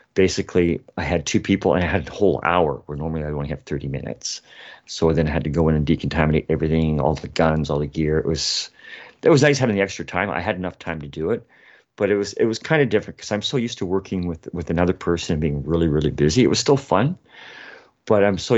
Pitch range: 80-100 Hz